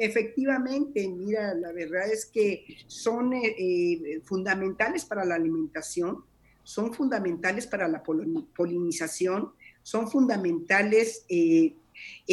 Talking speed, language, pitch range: 95 wpm, Spanish, 175-235 Hz